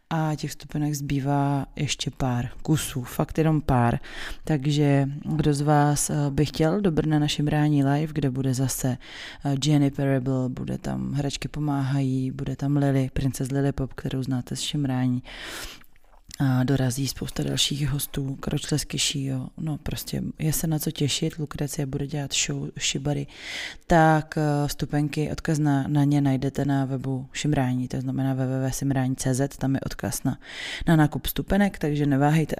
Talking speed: 150 wpm